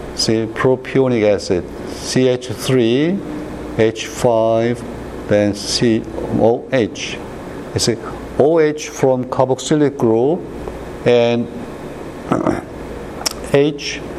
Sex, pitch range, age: male, 100-130 Hz, 60-79